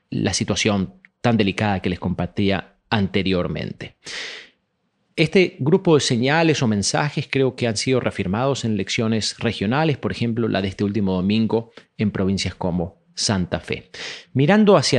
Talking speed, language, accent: 145 wpm, Spanish, Argentinian